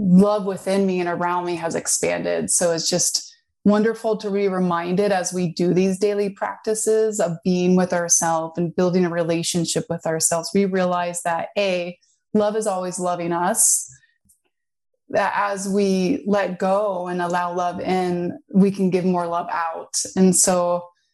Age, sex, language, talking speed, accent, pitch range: 20-39, female, English, 160 wpm, American, 175-200 Hz